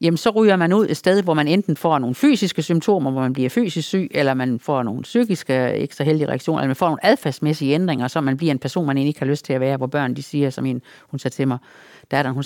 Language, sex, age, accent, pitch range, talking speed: Danish, female, 50-69, native, 135-175 Hz, 280 wpm